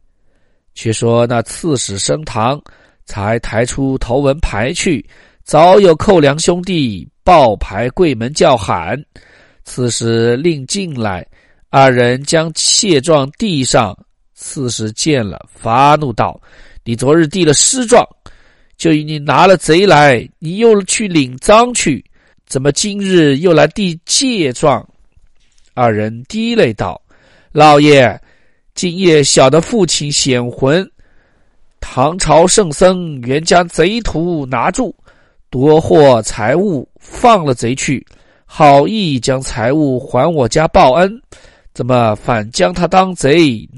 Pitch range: 120-165 Hz